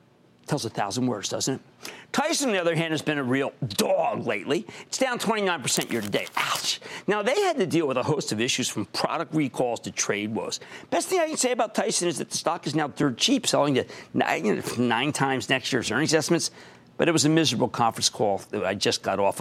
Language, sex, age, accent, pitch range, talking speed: English, male, 50-69, American, 125-190 Hz, 235 wpm